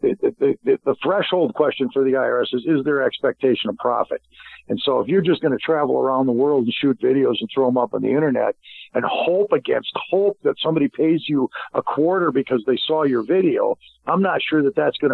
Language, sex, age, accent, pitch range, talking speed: English, male, 50-69, American, 135-190 Hz, 225 wpm